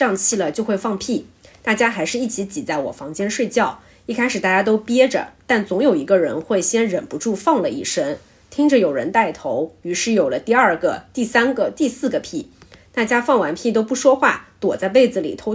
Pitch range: 205-285 Hz